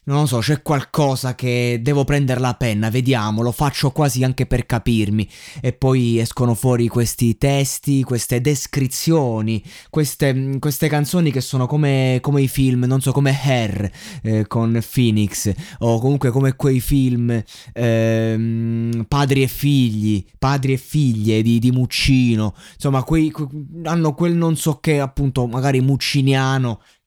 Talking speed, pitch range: 145 wpm, 115-145 Hz